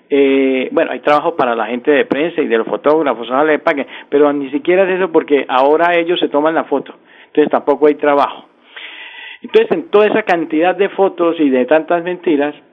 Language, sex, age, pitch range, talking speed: Spanish, male, 50-69, 145-175 Hz, 200 wpm